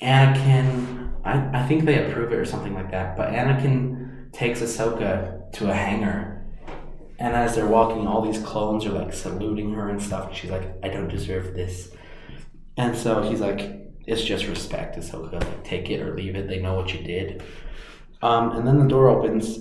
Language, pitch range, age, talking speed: English, 95-115 Hz, 20-39, 185 wpm